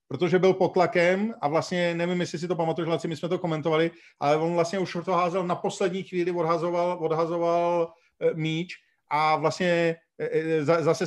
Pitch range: 150-175 Hz